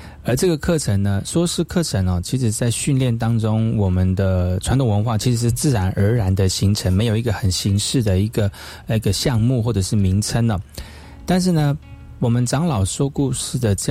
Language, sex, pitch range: Chinese, male, 95-130 Hz